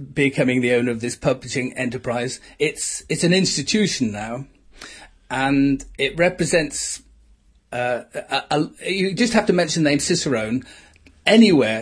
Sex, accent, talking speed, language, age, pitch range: male, British, 125 wpm, English, 40-59, 130-165 Hz